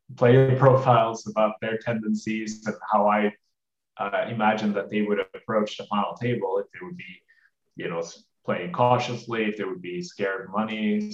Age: 20-39